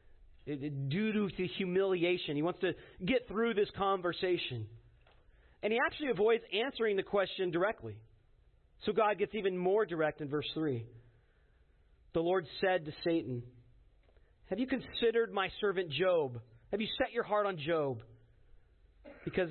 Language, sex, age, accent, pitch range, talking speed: English, male, 40-59, American, 120-195 Hz, 145 wpm